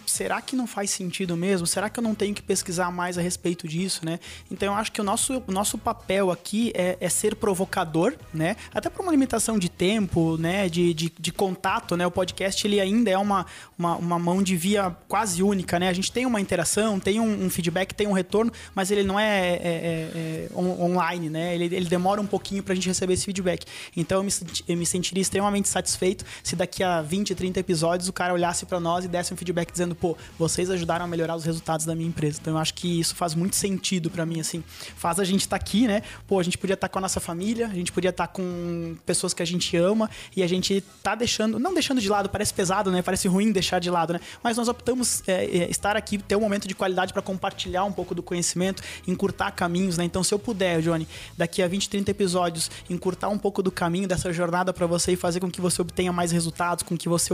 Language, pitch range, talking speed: Portuguese, 175-200 Hz, 245 wpm